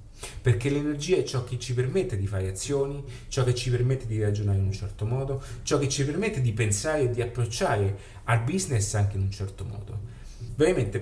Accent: native